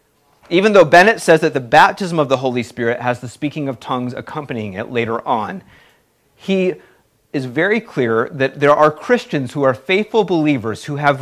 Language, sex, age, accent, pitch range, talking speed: English, male, 40-59, American, 125-160 Hz, 180 wpm